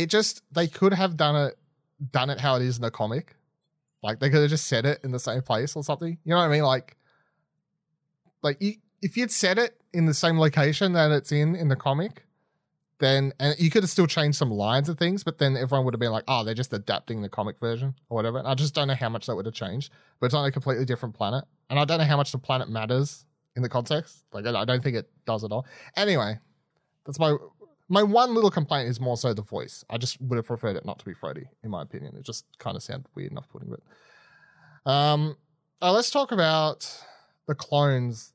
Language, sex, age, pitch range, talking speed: English, male, 30-49, 115-155 Hz, 245 wpm